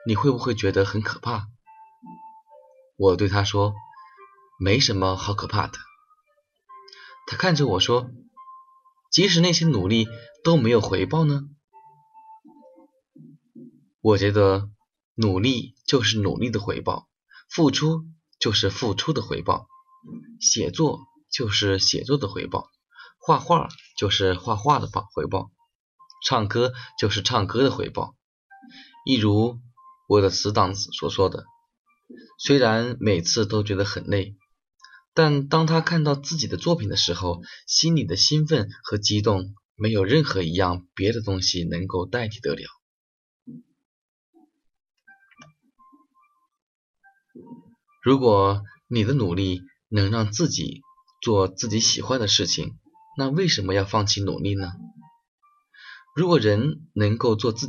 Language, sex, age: Chinese, male, 20-39